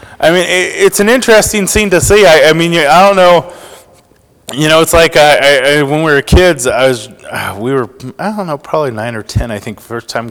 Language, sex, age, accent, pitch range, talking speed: English, male, 20-39, American, 125-180 Hz, 220 wpm